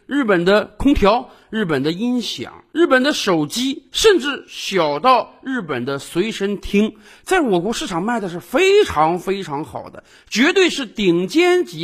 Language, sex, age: Chinese, male, 50-69